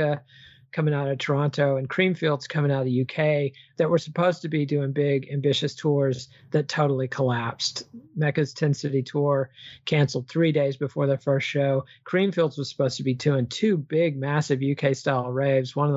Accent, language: American, English